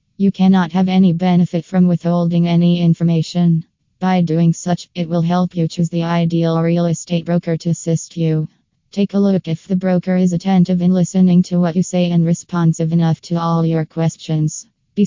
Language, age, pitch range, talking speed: English, 20-39, 165-180 Hz, 185 wpm